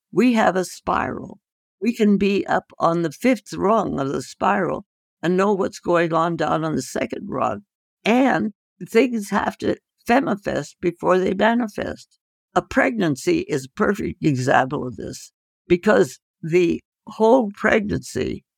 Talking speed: 145 wpm